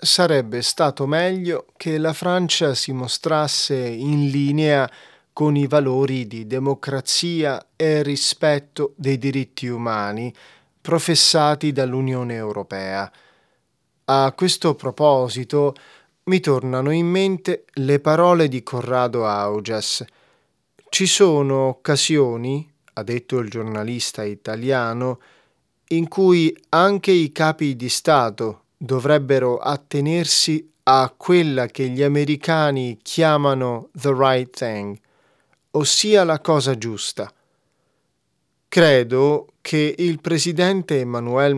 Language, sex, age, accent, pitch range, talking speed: Italian, male, 30-49, native, 125-165 Hz, 100 wpm